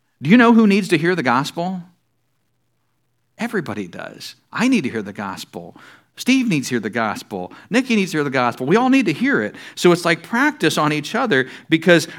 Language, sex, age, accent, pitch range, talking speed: English, male, 50-69, American, 125-185 Hz, 210 wpm